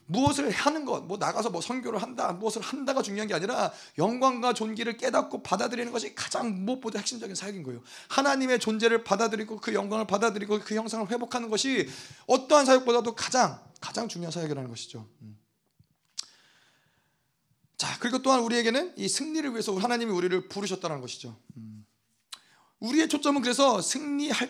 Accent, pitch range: native, 190-245 Hz